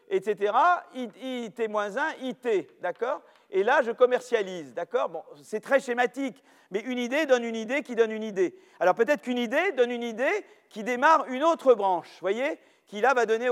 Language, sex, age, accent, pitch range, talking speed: French, male, 40-59, French, 220-285 Hz, 185 wpm